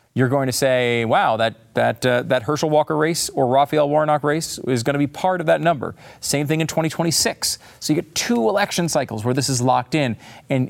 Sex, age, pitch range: male, 40-59, 125-155 Hz